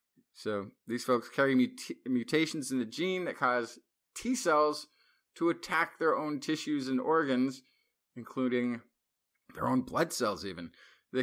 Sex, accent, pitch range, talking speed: male, American, 120-180 Hz, 145 wpm